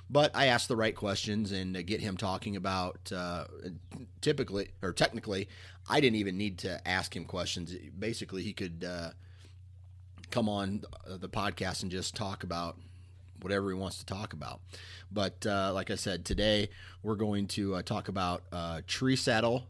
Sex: male